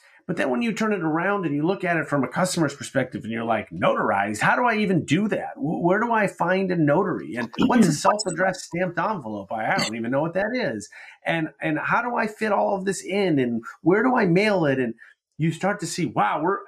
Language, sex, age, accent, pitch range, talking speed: English, male, 30-49, American, 120-175 Hz, 245 wpm